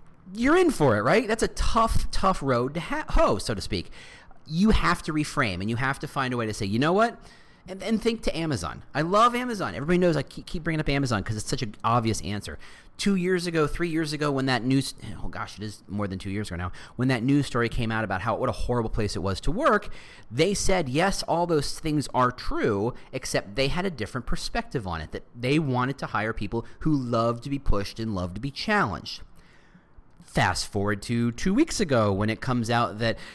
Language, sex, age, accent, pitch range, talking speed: English, male, 30-49, American, 110-180 Hz, 240 wpm